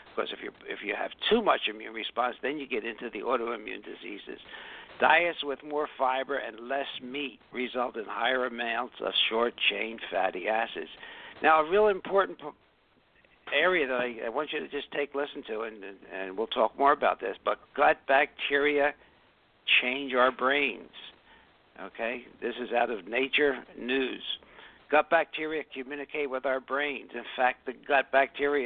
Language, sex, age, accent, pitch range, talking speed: English, male, 60-79, American, 130-155 Hz, 165 wpm